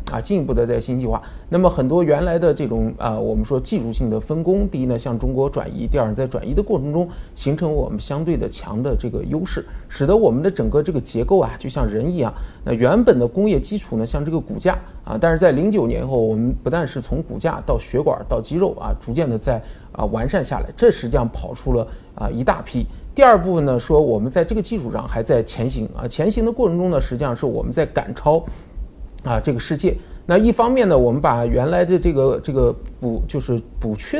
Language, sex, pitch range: Chinese, male, 115-170 Hz